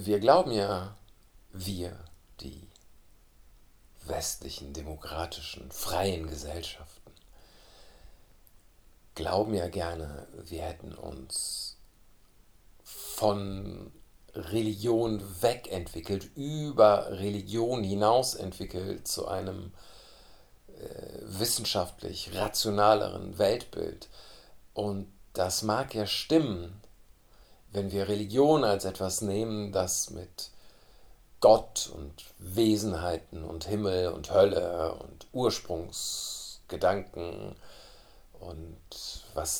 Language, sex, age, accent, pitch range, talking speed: German, male, 50-69, German, 90-110 Hz, 80 wpm